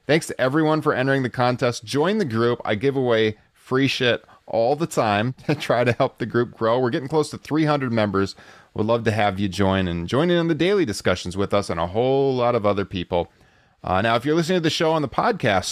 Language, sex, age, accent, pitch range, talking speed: English, male, 30-49, American, 105-140 Hz, 240 wpm